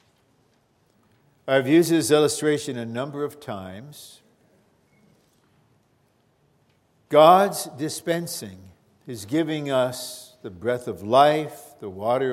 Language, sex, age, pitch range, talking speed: English, male, 60-79, 115-145 Hz, 90 wpm